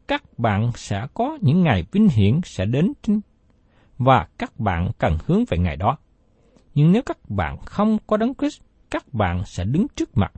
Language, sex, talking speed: Vietnamese, male, 190 wpm